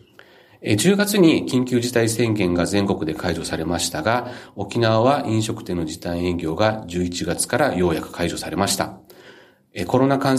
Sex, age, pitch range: male, 40-59, 90-130 Hz